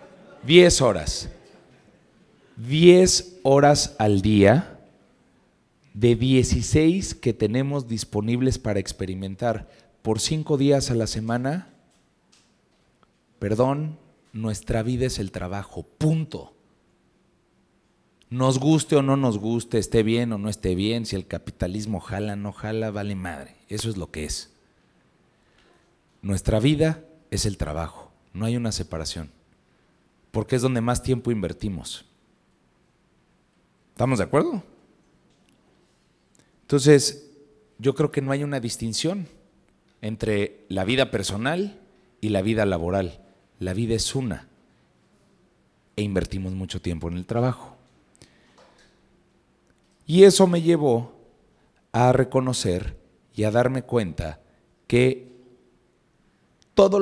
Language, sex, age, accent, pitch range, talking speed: Spanish, male, 40-59, Mexican, 100-135 Hz, 115 wpm